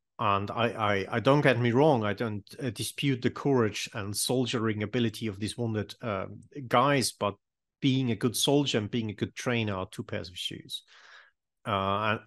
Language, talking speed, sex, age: English, 190 wpm, male, 30-49